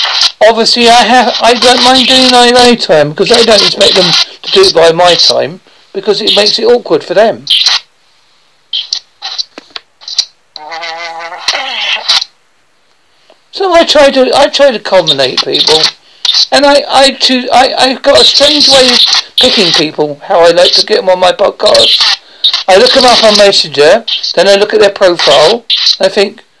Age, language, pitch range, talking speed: 60-79, English, 190-275 Hz, 165 wpm